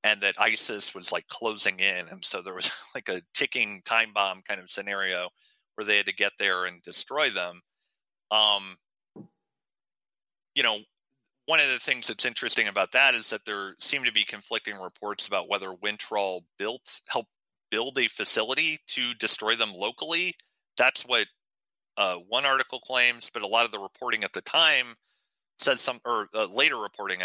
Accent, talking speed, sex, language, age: American, 175 wpm, male, English, 30-49